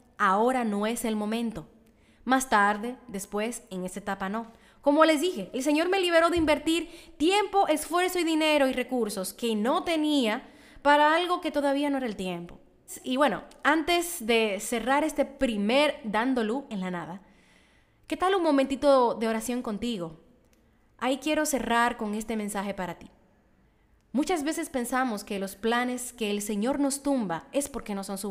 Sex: female